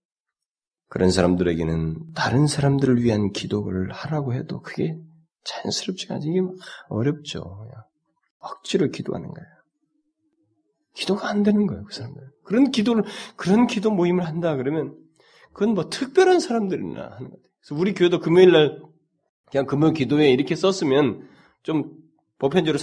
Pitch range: 120-200 Hz